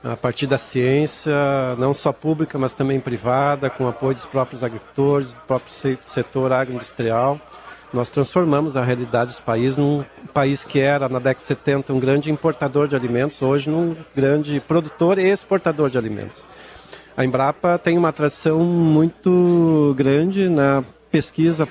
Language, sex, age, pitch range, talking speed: Portuguese, male, 50-69, 135-165 Hz, 150 wpm